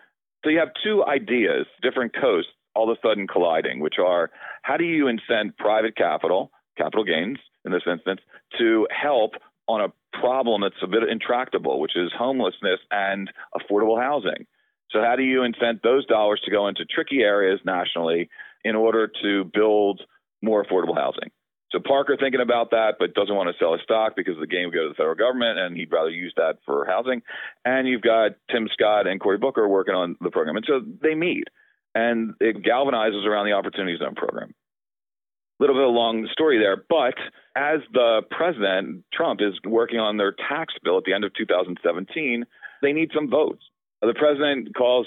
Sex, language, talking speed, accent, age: male, English, 190 wpm, American, 40-59